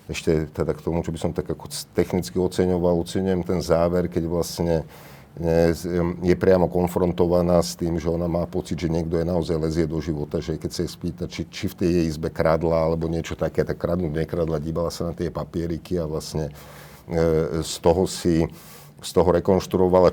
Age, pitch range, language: 50-69, 80-90 Hz, Slovak